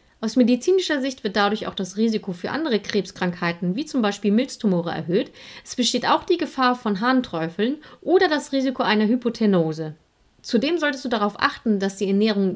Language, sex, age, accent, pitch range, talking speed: German, female, 30-49, German, 195-270 Hz, 170 wpm